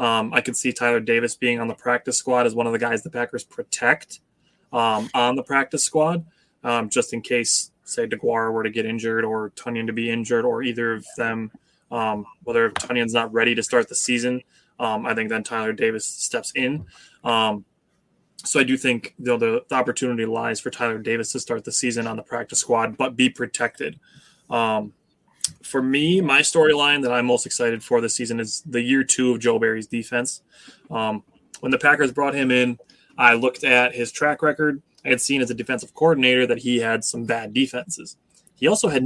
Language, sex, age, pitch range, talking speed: English, male, 20-39, 115-130 Hz, 205 wpm